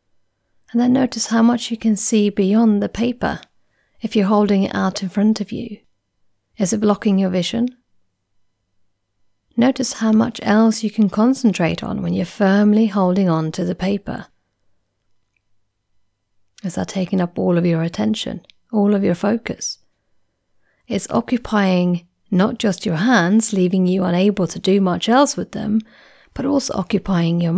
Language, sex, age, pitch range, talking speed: English, female, 30-49, 170-220 Hz, 155 wpm